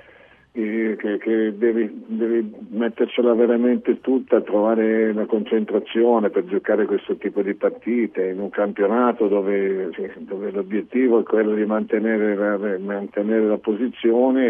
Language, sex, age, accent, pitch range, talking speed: Italian, male, 50-69, native, 100-110 Hz, 120 wpm